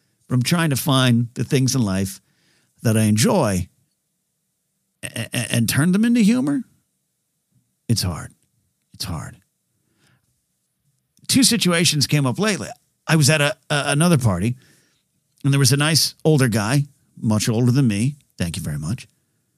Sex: male